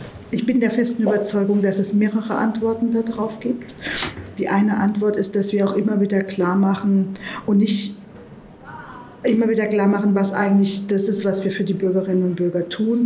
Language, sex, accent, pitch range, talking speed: German, female, German, 195-210 Hz, 185 wpm